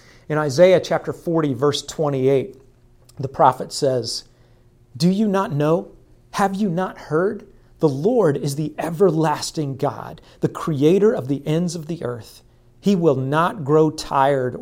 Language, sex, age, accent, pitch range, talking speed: English, male, 40-59, American, 130-175 Hz, 150 wpm